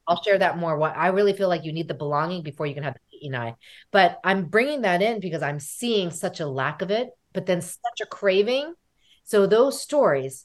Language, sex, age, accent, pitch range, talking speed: English, female, 30-49, American, 150-215 Hz, 235 wpm